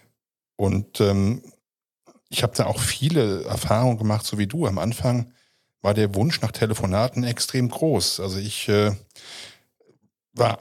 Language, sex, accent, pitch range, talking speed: German, male, German, 105-135 Hz, 140 wpm